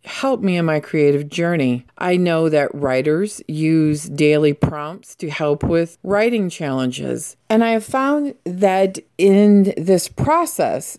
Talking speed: 140 wpm